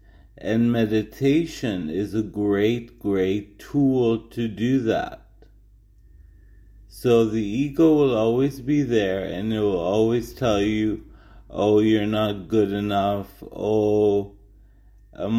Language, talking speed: English, 115 wpm